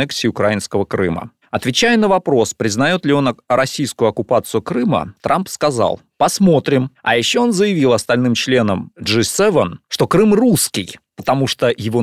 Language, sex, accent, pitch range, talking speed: Russian, male, native, 105-160 Hz, 135 wpm